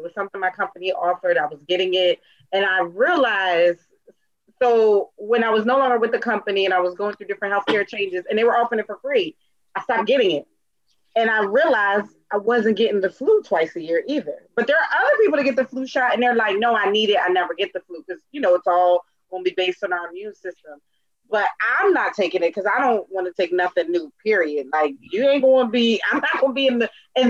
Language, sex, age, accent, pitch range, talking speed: English, female, 30-49, American, 180-240 Hz, 250 wpm